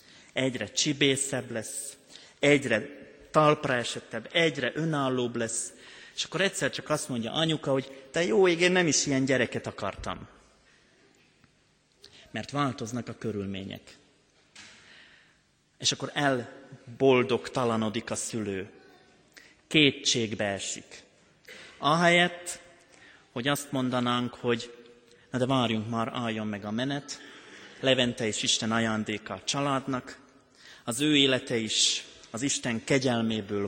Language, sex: Hungarian, male